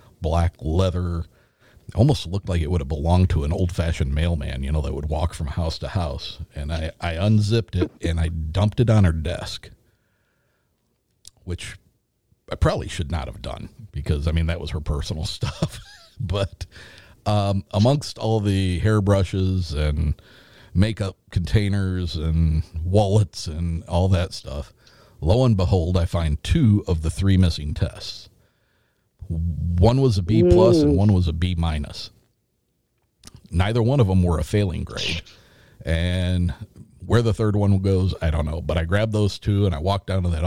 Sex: male